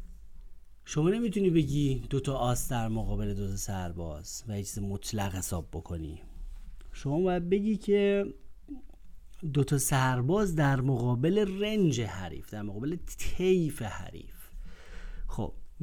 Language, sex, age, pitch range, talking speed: Persian, male, 30-49, 105-155 Hz, 115 wpm